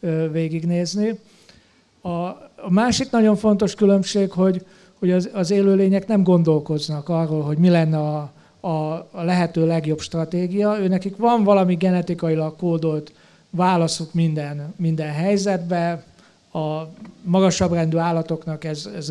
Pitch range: 160-195 Hz